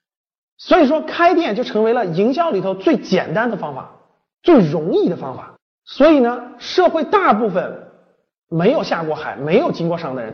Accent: native